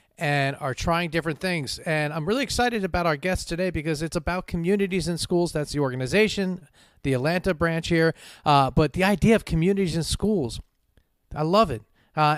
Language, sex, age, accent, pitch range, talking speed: English, male, 40-59, American, 145-195 Hz, 185 wpm